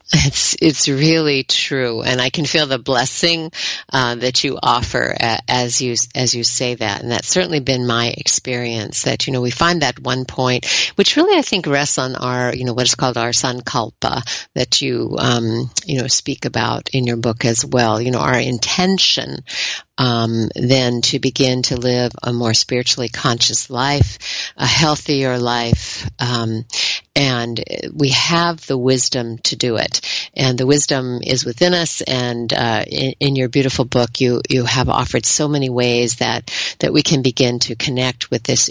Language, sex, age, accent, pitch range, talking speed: English, female, 50-69, American, 120-145 Hz, 180 wpm